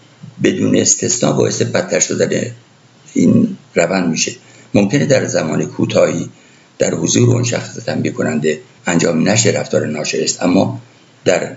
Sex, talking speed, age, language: male, 130 wpm, 60-79, Persian